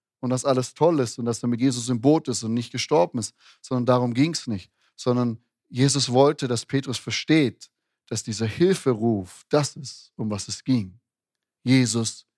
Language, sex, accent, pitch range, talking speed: German, male, German, 120-140 Hz, 185 wpm